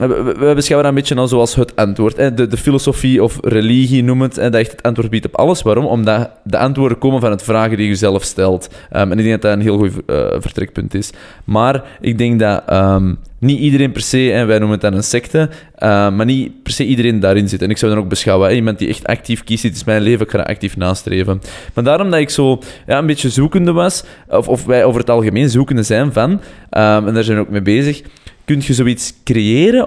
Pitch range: 105-135 Hz